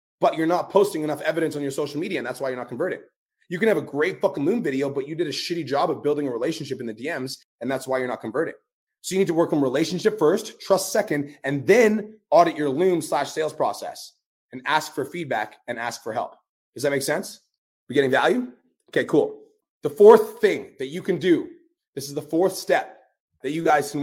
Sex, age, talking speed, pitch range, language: male, 30-49, 235 wpm, 145-195 Hz, English